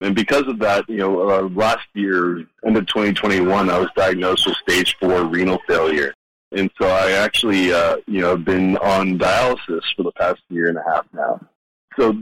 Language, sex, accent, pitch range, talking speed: English, male, American, 95-110 Hz, 195 wpm